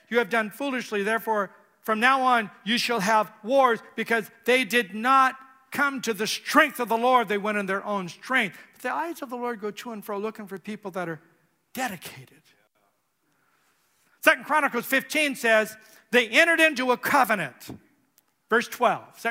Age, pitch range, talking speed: 60-79, 210-265 Hz, 175 wpm